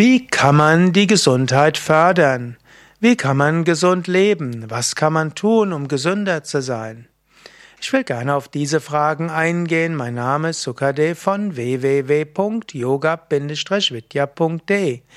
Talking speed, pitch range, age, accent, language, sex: 125 wpm, 140-175 Hz, 60-79, German, German, male